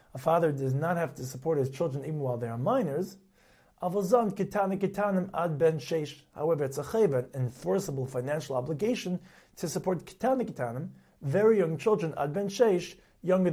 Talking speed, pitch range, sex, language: 125 wpm, 135-185 Hz, male, English